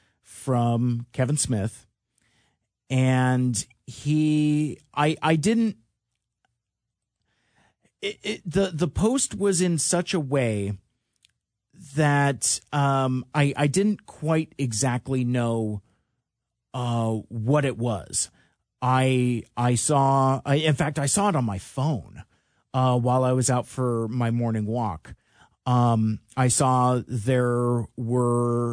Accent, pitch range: American, 115-135 Hz